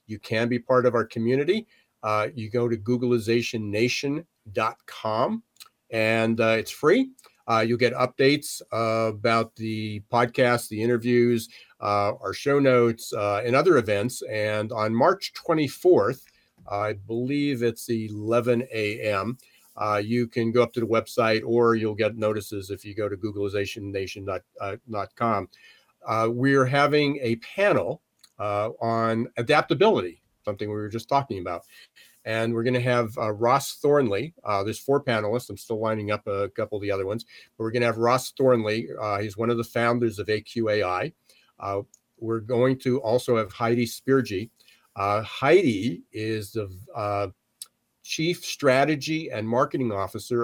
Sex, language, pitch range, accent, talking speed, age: male, English, 105-125 Hz, American, 150 wpm, 50-69